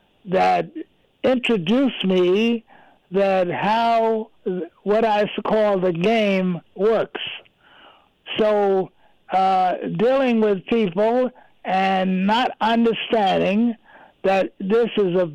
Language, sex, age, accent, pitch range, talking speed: English, male, 60-79, American, 195-225 Hz, 90 wpm